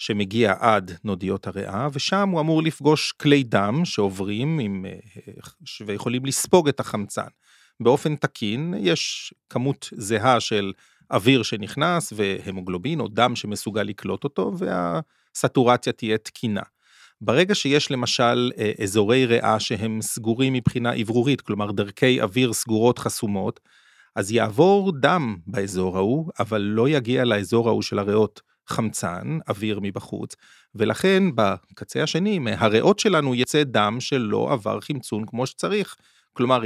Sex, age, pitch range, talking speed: male, 30-49, 110-140 Hz, 125 wpm